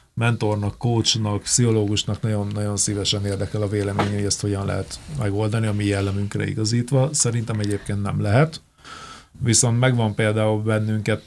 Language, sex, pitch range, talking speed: Hungarian, male, 100-120 Hz, 135 wpm